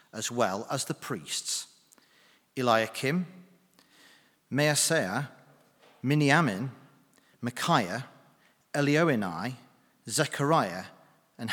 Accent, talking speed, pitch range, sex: British, 60 wpm, 120-155 Hz, male